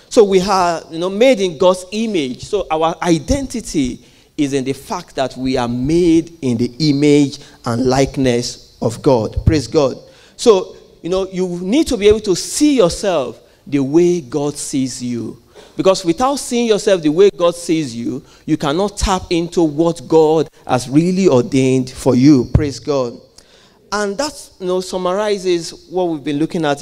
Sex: male